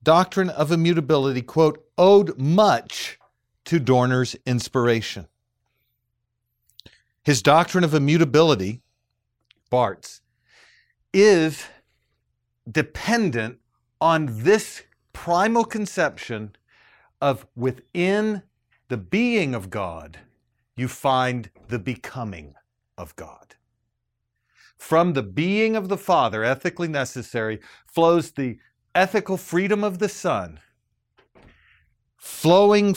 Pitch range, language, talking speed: 115-170 Hz, English, 85 wpm